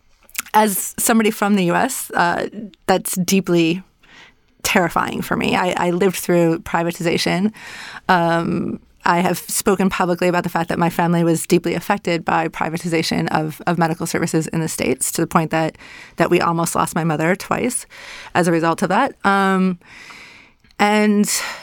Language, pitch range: English, 170-210 Hz